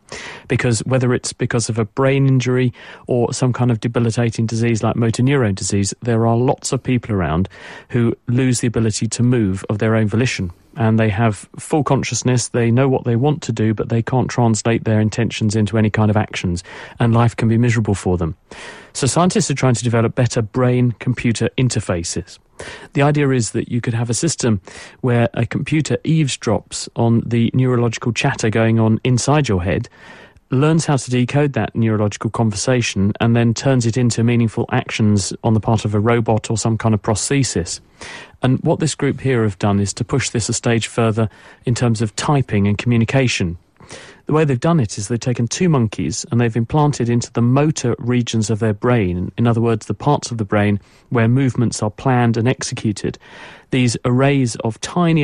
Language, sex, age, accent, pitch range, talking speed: English, male, 40-59, British, 110-130 Hz, 195 wpm